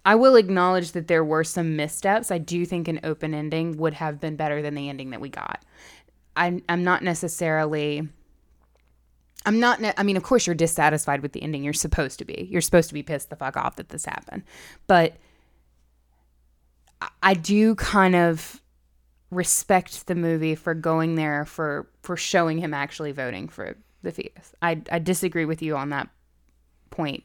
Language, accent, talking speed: English, American, 180 wpm